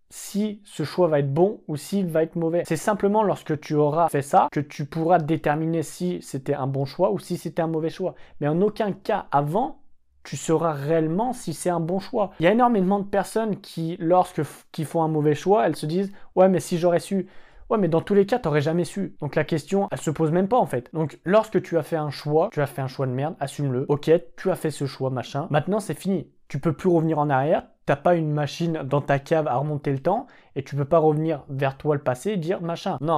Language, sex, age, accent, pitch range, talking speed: French, male, 20-39, French, 145-180 Hz, 265 wpm